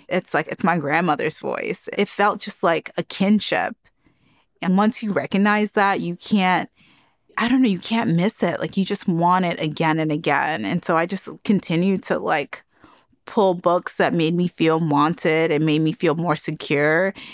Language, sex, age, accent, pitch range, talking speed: English, female, 30-49, American, 180-245 Hz, 185 wpm